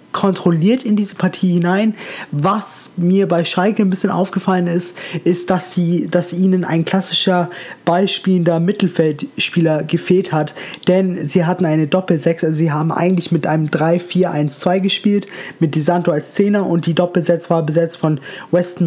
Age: 20-39